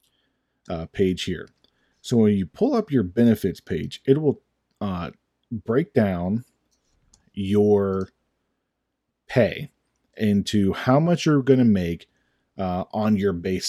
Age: 30-49